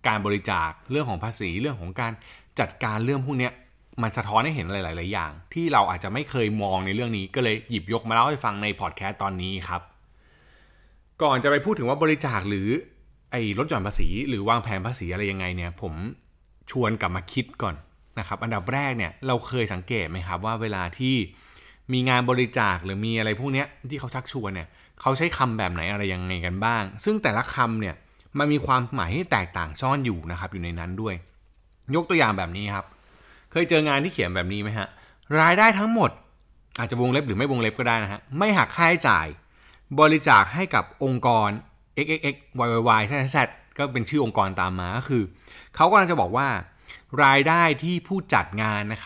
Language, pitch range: Thai, 95-135 Hz